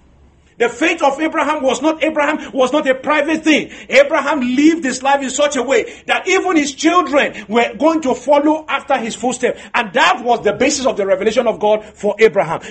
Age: 50-69